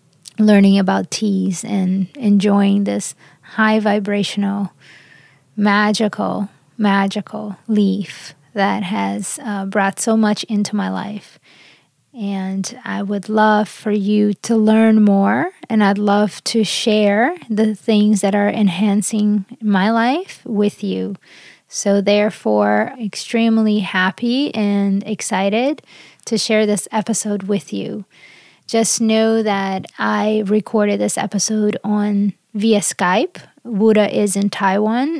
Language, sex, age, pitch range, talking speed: English, female, 20-39, 195-215 Hz, 120 wpm